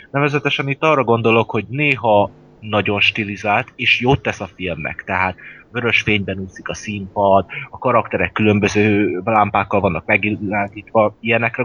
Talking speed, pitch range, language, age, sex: 135 wpm, 100-125 Hz, Hungarian, 30-49, male